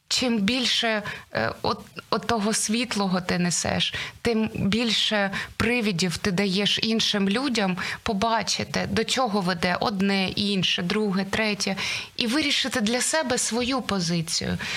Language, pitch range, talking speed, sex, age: Ukrainian, 200-260 Hz, 120 wpm, female, 20-39